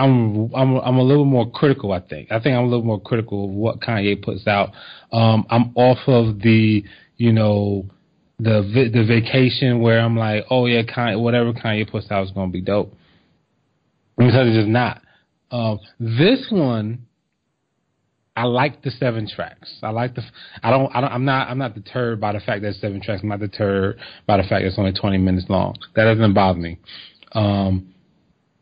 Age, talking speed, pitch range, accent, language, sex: 20-39, 195 wpm, 100-125 Hz, American, English, male